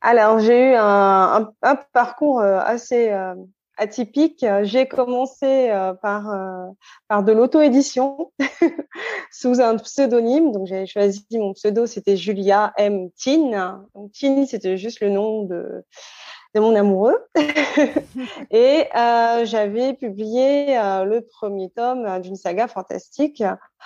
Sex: female